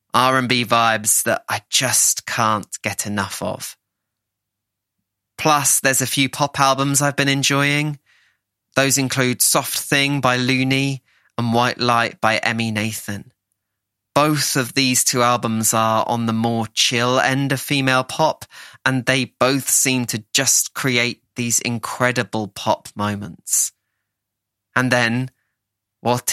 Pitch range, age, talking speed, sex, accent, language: 110-130 Hz, 20-39, 130 wpm, male, British, English